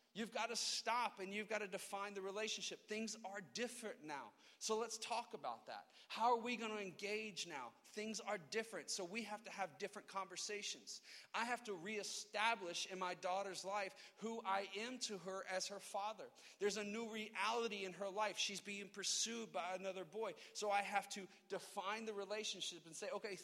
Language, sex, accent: English, male, American